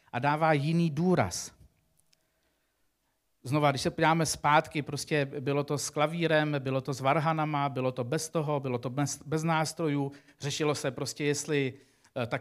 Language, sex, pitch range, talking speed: Czech, male, 130-155 Hz, 150 wpm